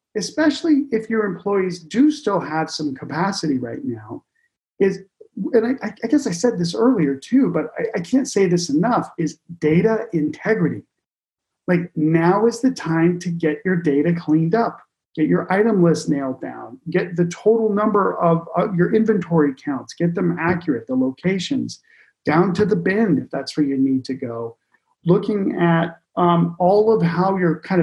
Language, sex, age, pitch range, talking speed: English, male, 40-59, 155-210 Hz, 175 wpm